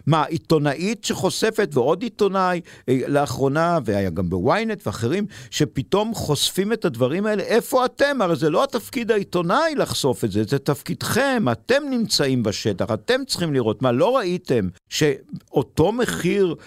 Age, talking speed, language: 50-69, 140 wpm, Hebrew